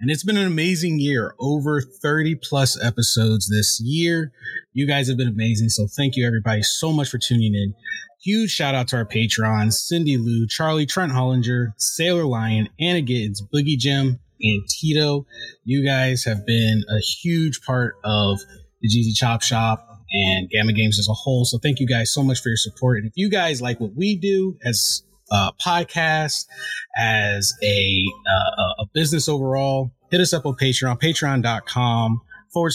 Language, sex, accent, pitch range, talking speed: English, male, American, 110-145 Hz, 175 wpm